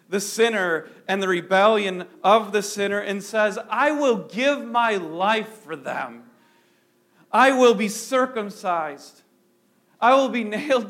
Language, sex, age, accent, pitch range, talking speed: English, male, 40-59, American, 165-235 Hz, 140 wpm